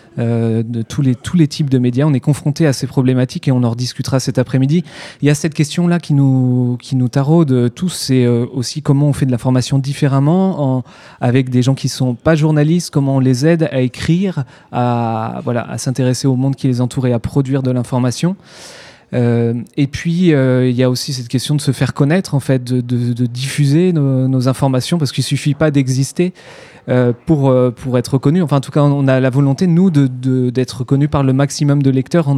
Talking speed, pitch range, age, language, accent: 230 wpm, 125-145 Hz, 20-39, French, French